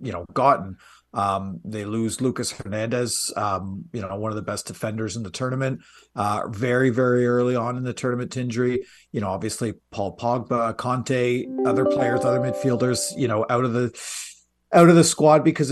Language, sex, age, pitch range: English, male, 40-59, 110-140 Hz